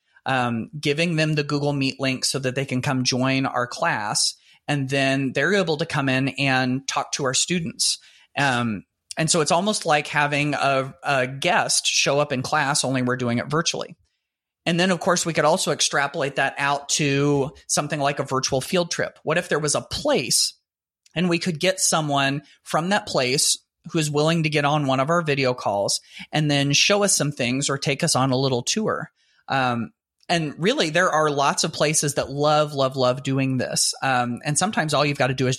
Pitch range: 130-155 Hz